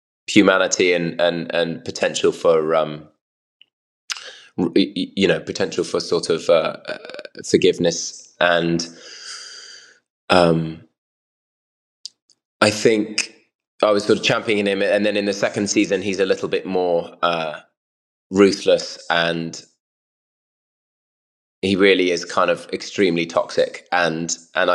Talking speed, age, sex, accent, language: 115 wpm, 20-39, male, British, English